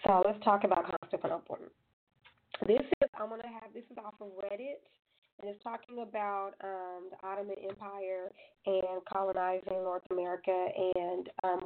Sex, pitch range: female, 185-215 Hz